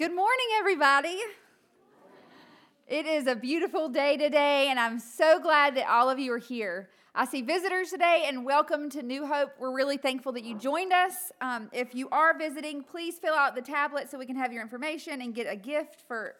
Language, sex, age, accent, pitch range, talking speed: English, female, 30-49, American, 235-290 Hz, 205 wpm